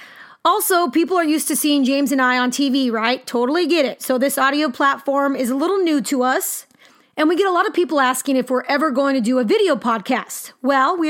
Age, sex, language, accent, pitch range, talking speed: 30-49, female, English, American, 255-320 Hz, 240 wpm